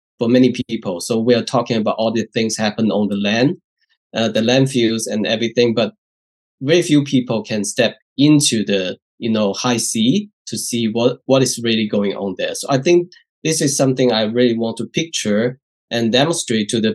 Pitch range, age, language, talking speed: 110-130 Hz, 20-39, English, 195 wpm